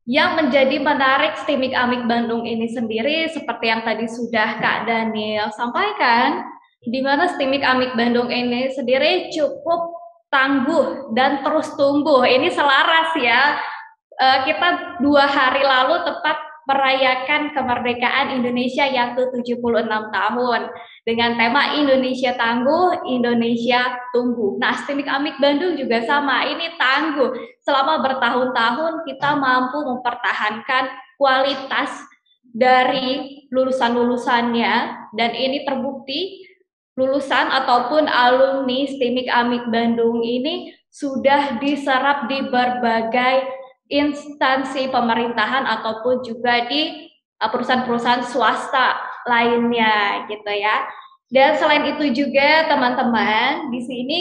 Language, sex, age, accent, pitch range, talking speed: Indonesian, female, 20-39, native, 240-285 Hz, 105 wpm